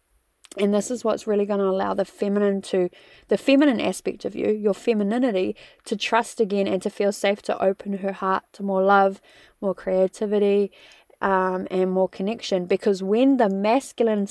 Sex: female